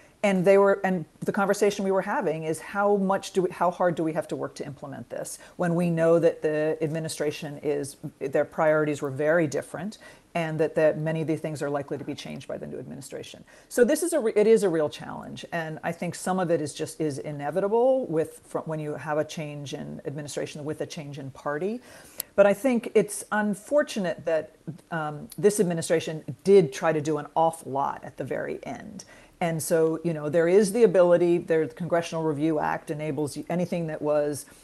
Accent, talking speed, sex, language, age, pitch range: American, 210 wpm, female, English, 40-59, 155-185 Hz